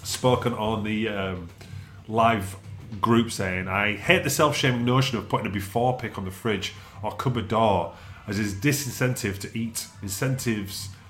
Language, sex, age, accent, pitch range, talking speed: English, male, 30-49, British, 100-125 Hz, 160 wpm